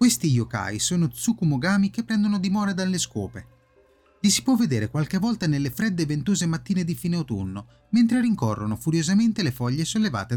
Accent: native